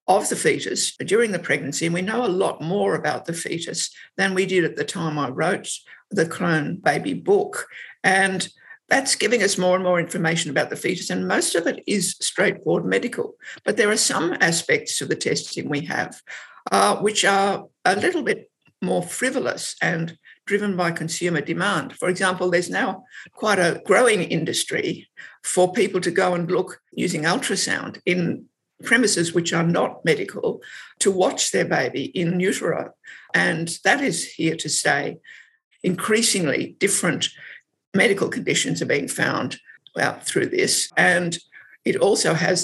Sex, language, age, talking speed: female, English, 60-79, 165 wpm